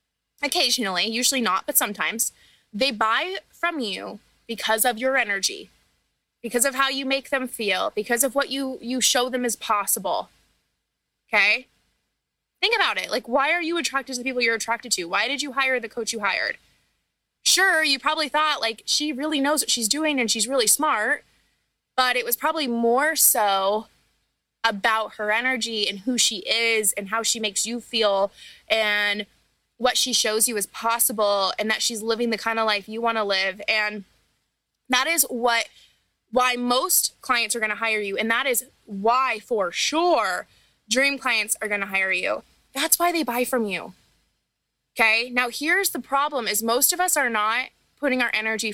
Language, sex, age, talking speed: English, female, 20-39, 180 wpm